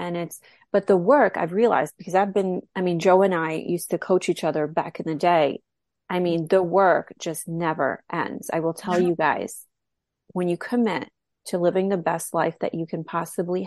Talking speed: 210 wpm